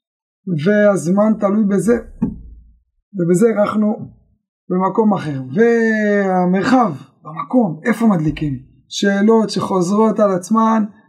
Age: 20-39